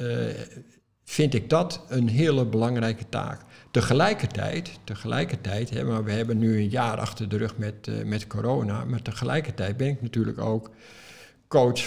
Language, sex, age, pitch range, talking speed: Dutch, male, 60-79, 105-125 Hz, 145 wpm